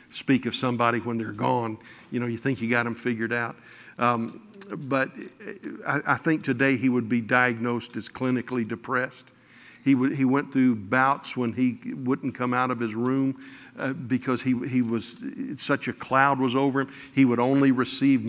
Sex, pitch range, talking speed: male, 125-140 Hz, 185 wpm